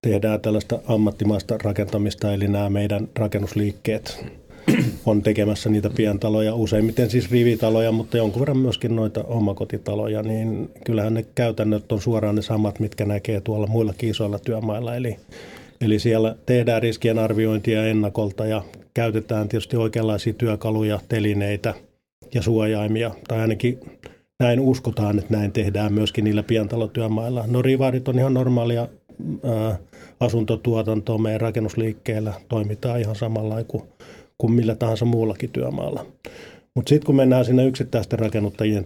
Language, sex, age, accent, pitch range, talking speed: Finnish, male, 30-49, native, 105-115 Hz, 130 wpm